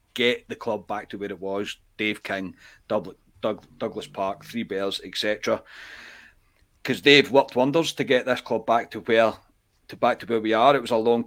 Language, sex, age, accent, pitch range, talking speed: English, male, 30-49, British, 105-120 Hz, 200 wpm